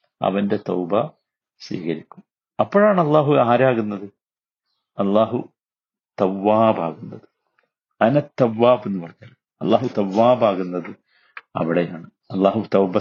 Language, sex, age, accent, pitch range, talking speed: Malayalam, male, 50-69, native, 100-135 Hz, 75 wpm